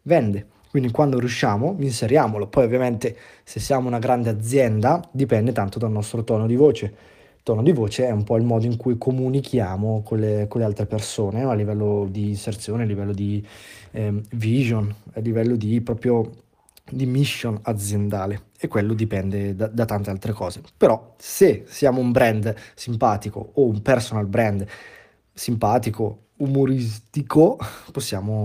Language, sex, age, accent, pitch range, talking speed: Italian, male, 20-39, native, 110-140 Hz, 160 wpm